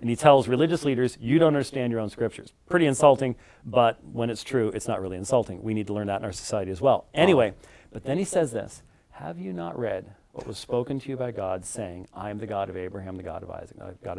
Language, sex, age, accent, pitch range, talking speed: English, male, 40-59, American, 100-135 Hz, 255 wpm